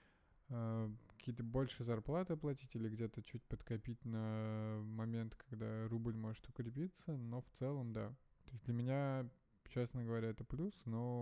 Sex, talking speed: male, 145 wpm